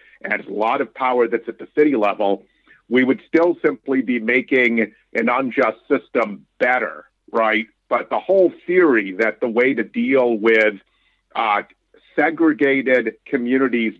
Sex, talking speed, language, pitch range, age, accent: male, 145 wpm, English, 110-145 Hz, 50-69, American